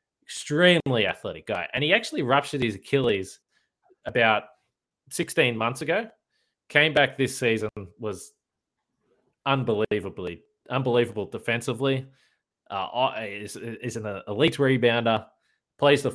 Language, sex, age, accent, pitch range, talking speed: English, male, 20-39, Australian, 110-135 Hz, 110 wpm